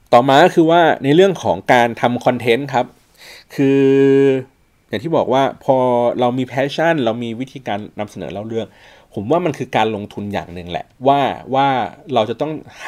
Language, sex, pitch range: Thai, male, 110-145 Hz